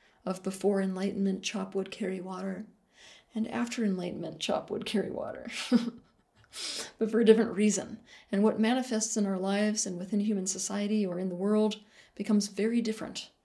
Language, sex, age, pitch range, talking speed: English, female, 40-59, 190-220 Hz, 160 wpm